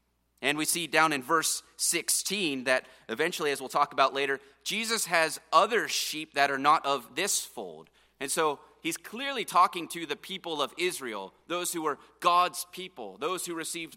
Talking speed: 180 wpm